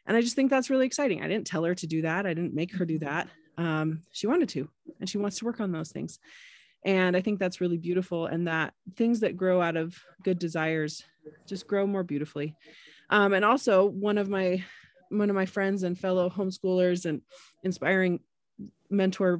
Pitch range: 180-245 Hz